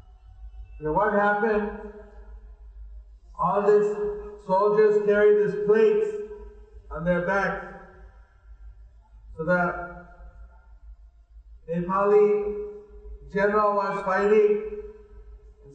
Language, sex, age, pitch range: English, male, 50-69, 150-220 Hz